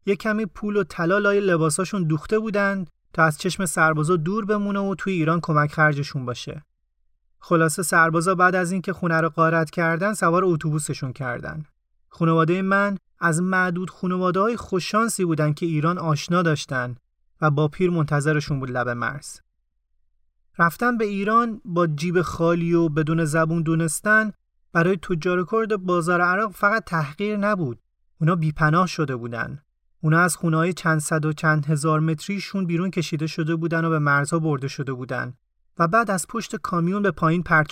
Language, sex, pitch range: Persian, male, 155-190 Hz